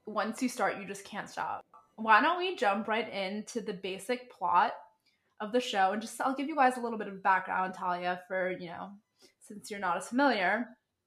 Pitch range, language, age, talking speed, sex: 190-235 Hz, English, 20-39, 210 wpm, female